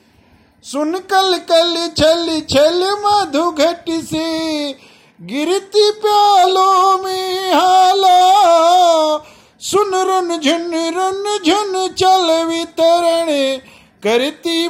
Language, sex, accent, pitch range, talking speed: Hindi, male, native, 285-360 Hz, 80 wpm